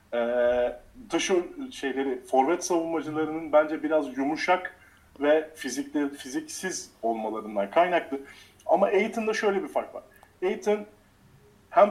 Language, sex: Turkish, male